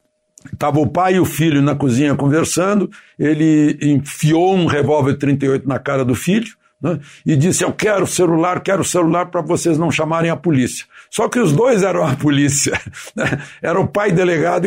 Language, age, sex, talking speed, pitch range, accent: Portuguese, 60-79, male, 190 wpm, 140-185 Hz, Brazilian